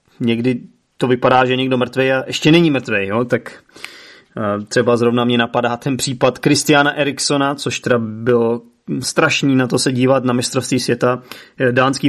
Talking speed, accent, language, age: 155 wpm, native, Czech, 30-49